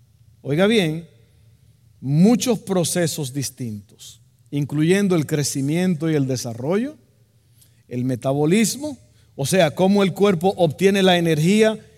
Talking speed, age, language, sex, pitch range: 105 wpm, 50-69, Spanish, male, 130-205 Hz